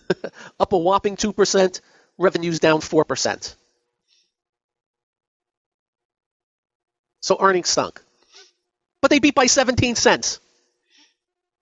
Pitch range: 130-210 Hz